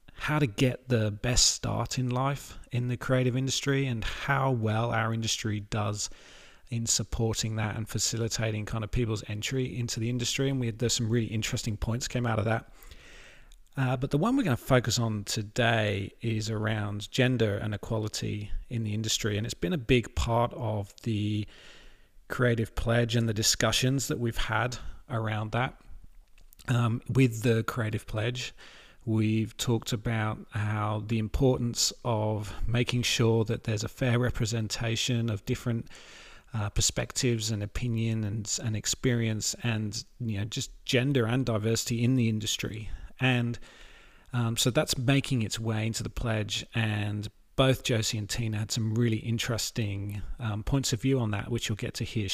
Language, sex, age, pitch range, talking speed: English, male, 30-49, 110-125 Hz, 165 wpm